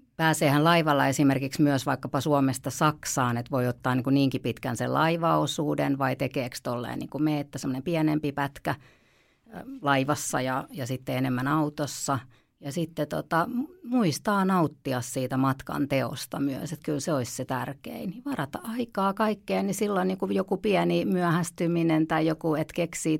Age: 50-69